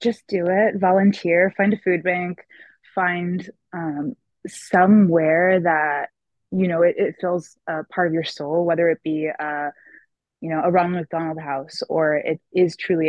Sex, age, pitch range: female, 20-39, 155-185 Hz